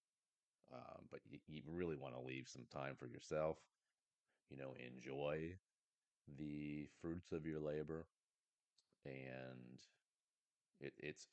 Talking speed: 120 wpm